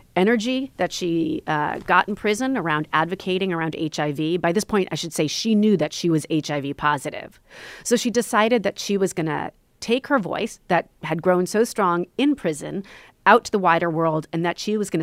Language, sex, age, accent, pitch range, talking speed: English, female, 40-59, American, 160-210 Hz, 210 wpm